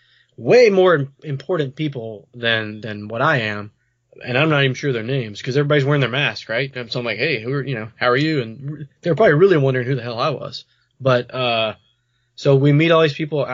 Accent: American